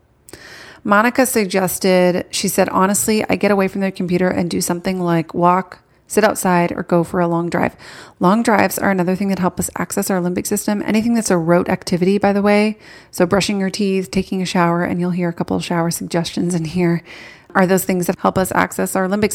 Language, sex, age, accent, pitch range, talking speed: English, female, 30-49, American, 175-200 Hz, 215 wpm